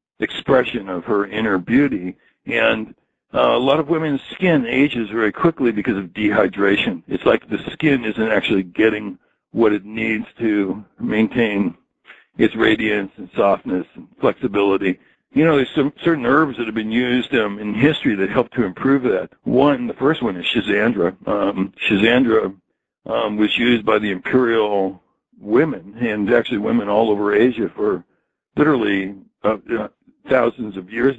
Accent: American